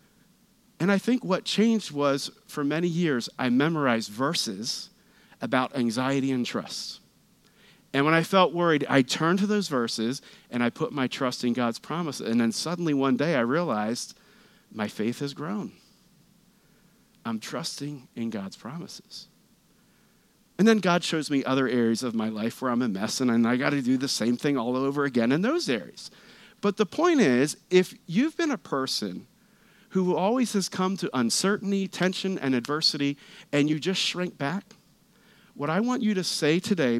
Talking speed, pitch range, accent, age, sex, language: 175 wpm, 130-210 Hz, American, 40-59, male, English